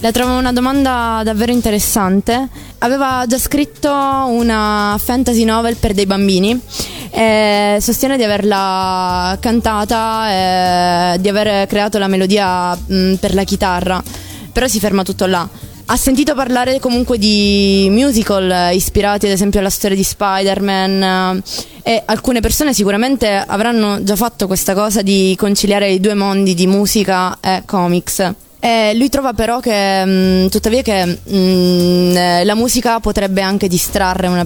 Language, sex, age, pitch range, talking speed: Italian, female, 20-39, 185-225 Hz, 140 wpm